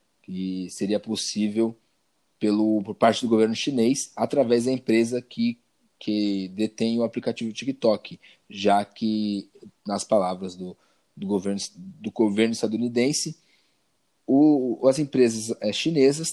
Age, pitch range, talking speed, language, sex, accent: 20-39, 105-130 Hz, 105 wpm, Portuguese, male, Brazilian